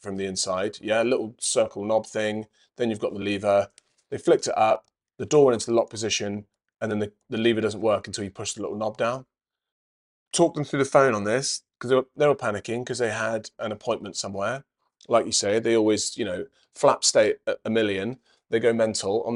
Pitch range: 105-130 Hz